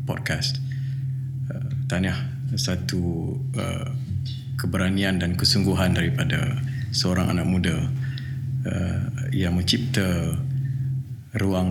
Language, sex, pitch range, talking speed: Malay, male, 100-130 Hz, 80 wpm